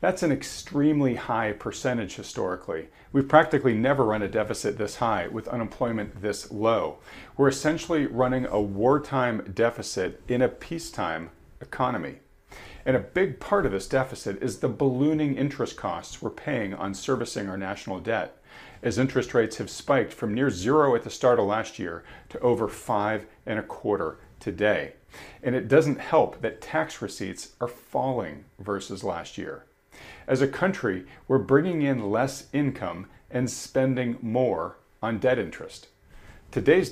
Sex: male